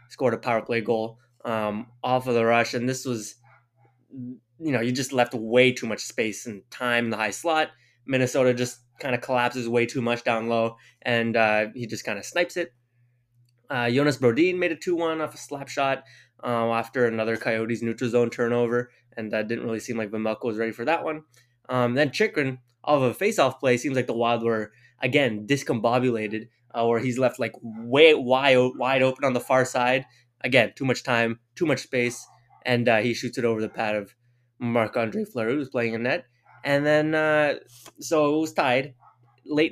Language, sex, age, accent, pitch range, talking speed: English, male, 20-39, American, 115-135 Hz, 200 wpm